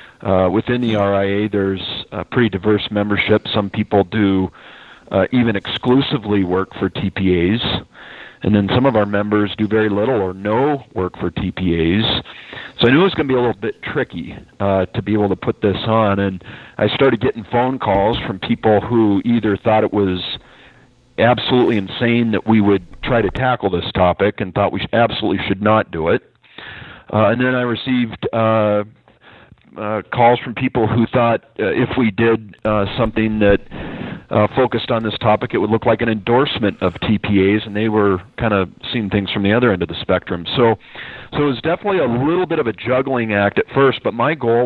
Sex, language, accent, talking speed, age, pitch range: male, English, American, 195 wpm, 40-59, 100-120 Hz